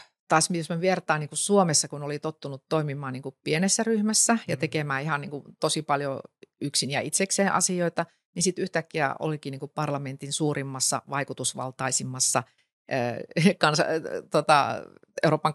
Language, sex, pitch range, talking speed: Finnish, female, 135-165 Hz, 135 wpm